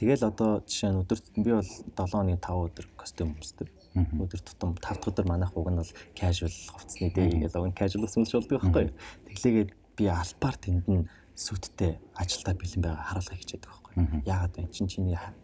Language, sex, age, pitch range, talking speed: English, male, 30-49, 85-100 Hz, 175 wpm